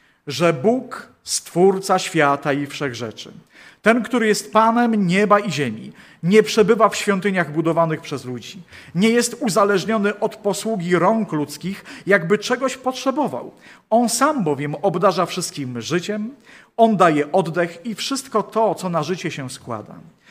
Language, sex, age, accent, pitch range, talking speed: Polish, male, 40-59, native, 155-215 Hz, 140 wpm